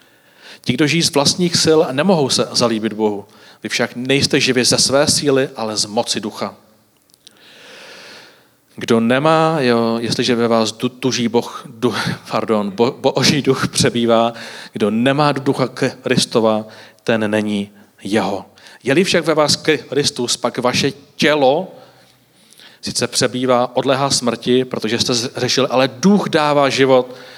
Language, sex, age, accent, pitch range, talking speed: Czech, male, 40-59, native, 115-140 Hz, 130 wpm